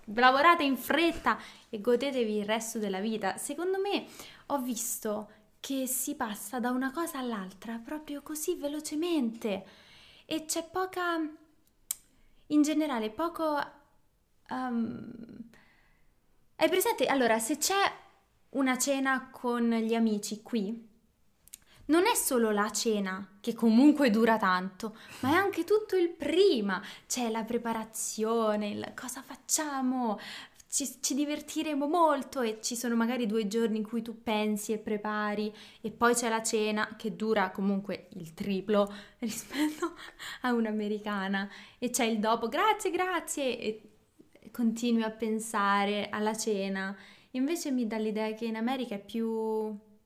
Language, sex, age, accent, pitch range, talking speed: Italian, female, 20-39, native, 215-285 Hz, 135 wpm